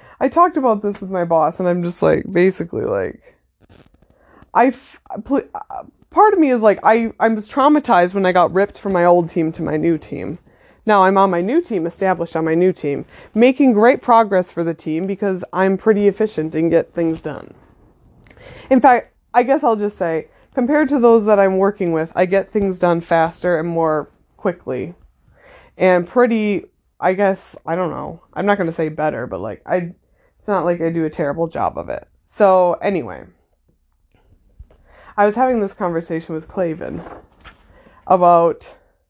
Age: 20-39